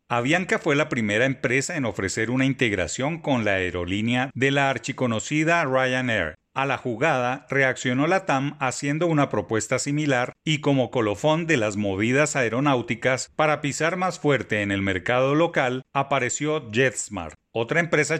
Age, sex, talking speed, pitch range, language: 40-59, male, 150 wpm, 115-150 Hz, Spanish